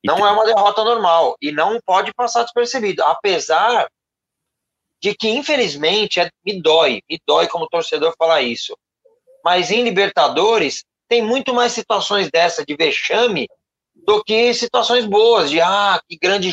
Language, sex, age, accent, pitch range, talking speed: Portuguese, male, 30-49, Brazilian, 165-235 Hz, 145 wpm